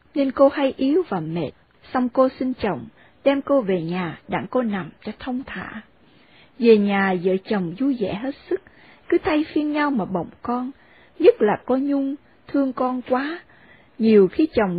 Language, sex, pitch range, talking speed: Vietnamese, female, 200-285 Hz, 185 wpm